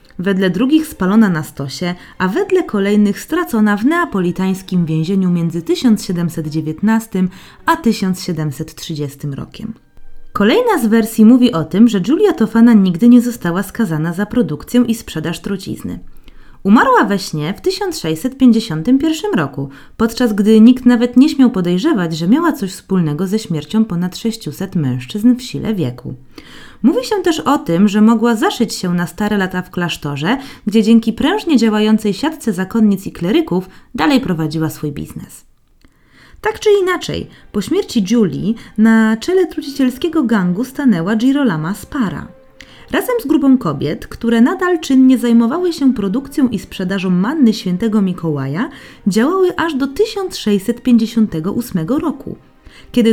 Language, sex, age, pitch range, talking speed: Polish, female, 20-39, 180-260 Hz, 135 wpm